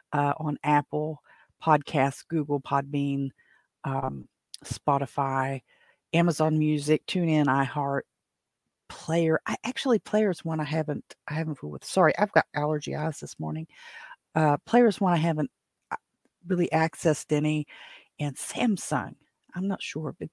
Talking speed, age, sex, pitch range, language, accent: 130 wpm, 50-69, female, 150-180 Hz, English, American